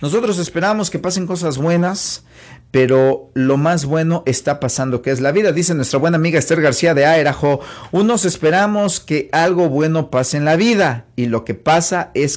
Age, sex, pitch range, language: 50-69, male, 155-215 Hz, Spanish